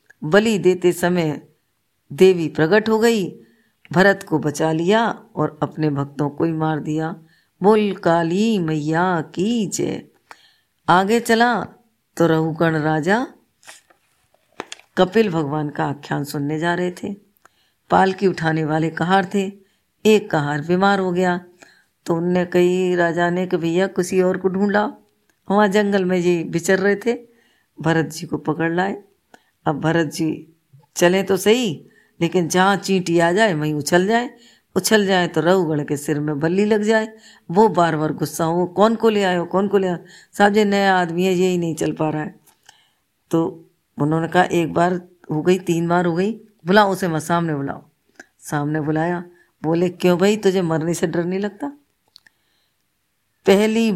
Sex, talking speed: female, 160 wpm